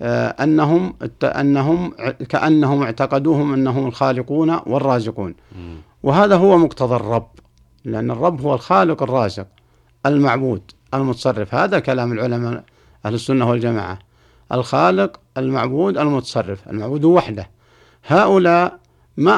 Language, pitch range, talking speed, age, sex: Arabic, 115-150 Hz, 95 wpm, 60-79, male